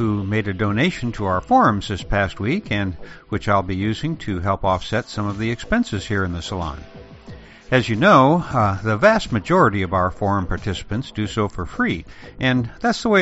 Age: 60-79